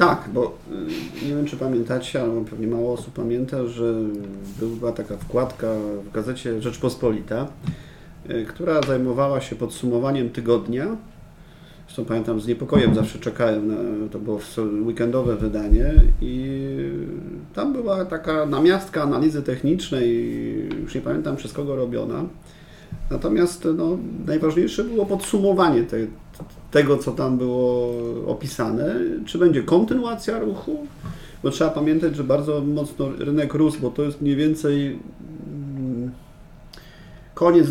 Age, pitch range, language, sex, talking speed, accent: 40-59, 120-165 Hz, Polish, male, 120 wpm, native